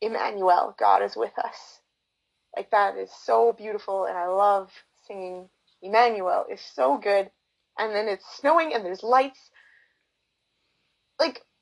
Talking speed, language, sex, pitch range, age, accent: 135 wpm, English, female, 205-285 Hz, 30-49, American